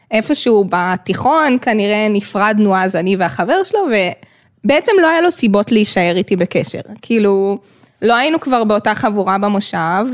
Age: 20-39